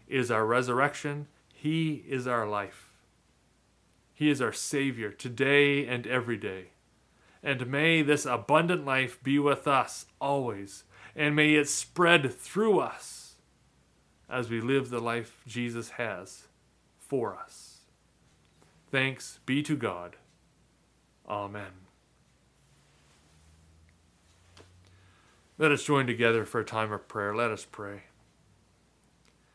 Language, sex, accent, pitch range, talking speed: English, male, American, 110-140 Hz, 115 wpm